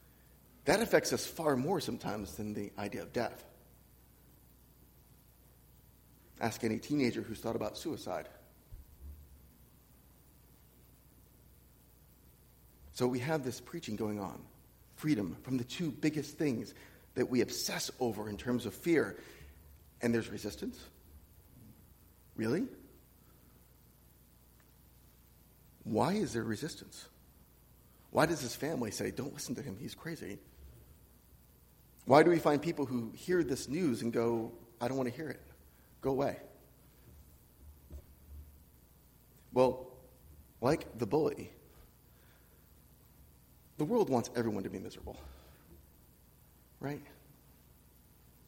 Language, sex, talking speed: English, male, 110 wpm